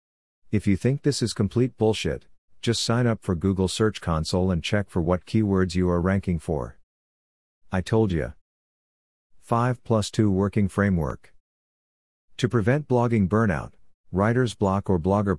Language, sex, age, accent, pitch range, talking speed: English, male, 50-69, American, 85-105 Hz, 150 wpm